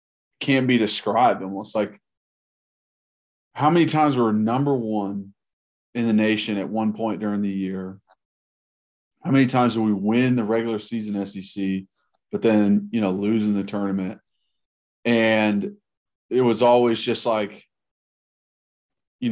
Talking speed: 135 wpm